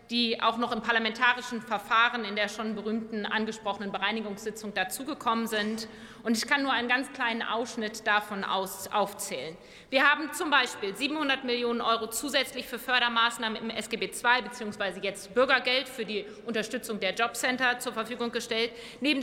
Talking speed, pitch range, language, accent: 155 wpm, 215-255 Hz, German, German